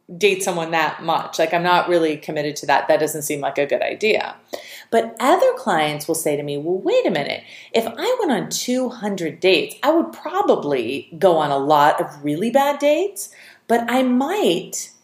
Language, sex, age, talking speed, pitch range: English, female, 30-49, 195 wpm, 155-230 Hz